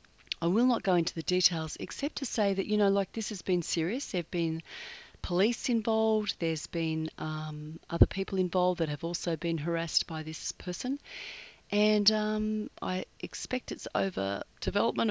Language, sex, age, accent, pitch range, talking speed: English, female, 40-59, Australian, 160-215 Hz, 175 wpm